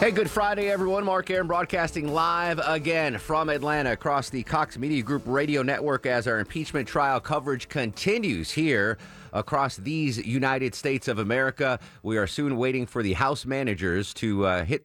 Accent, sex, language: American, male, English